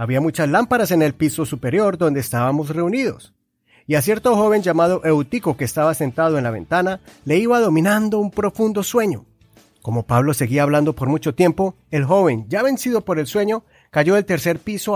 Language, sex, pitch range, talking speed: Spanish, male, 125-190 Hz, 185 wpm